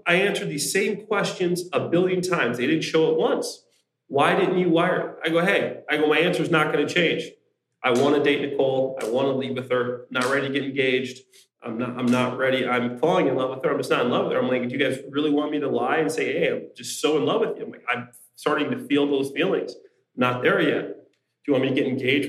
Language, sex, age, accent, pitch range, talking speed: English, male, 30-49, American, 135-170 Hz, 275 wpm